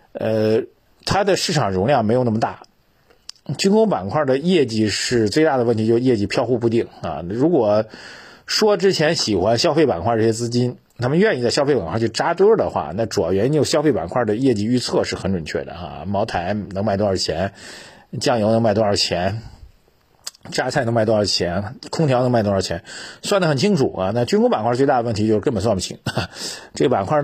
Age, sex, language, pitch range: 50-69, male, Chinese, 105-145 Hz